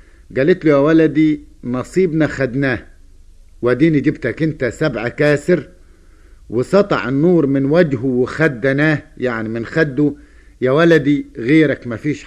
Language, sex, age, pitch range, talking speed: Arabic, male, 50-69, 120-160 Hz, 110 wpm